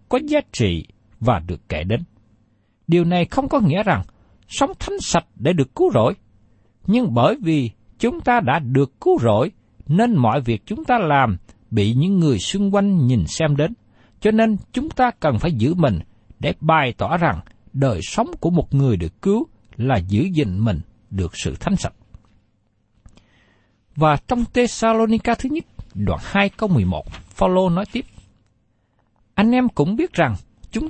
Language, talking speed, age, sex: Vietnamese, 170 wpm, 60-79, male